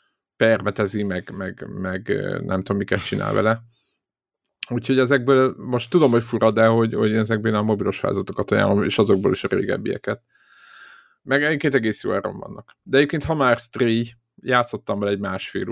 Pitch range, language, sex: 105-125 Hz, Hungarian, male